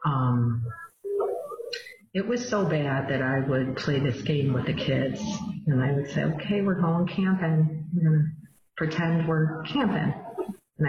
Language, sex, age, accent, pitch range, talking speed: English, female, 50-69, American, 145-180 Hz, 155 wpm